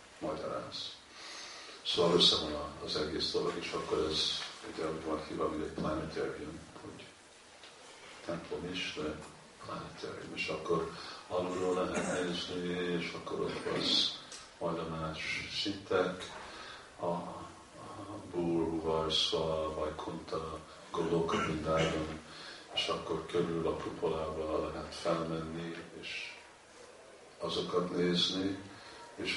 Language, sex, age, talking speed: Hungarian, male, 50-69, 105 wpm